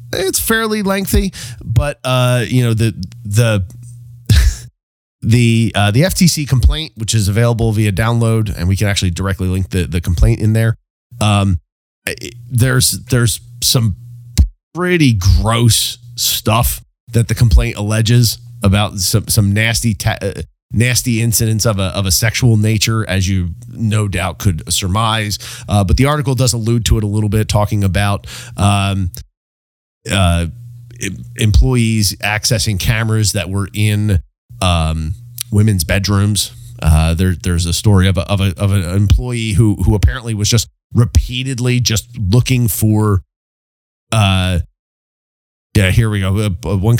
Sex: male